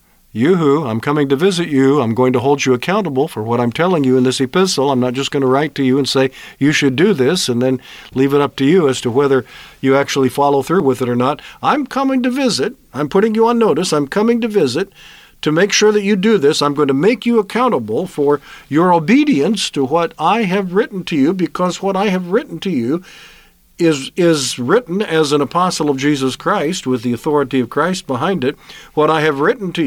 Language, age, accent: English, 50-69, American